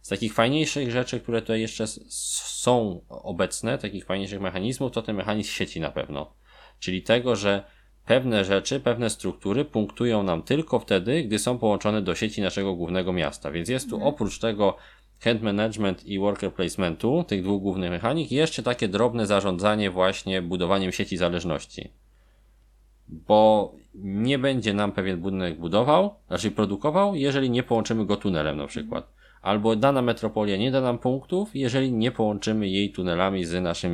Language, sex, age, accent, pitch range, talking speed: Polish, male, 20-39, native, 95-115 Hz, 155 wpm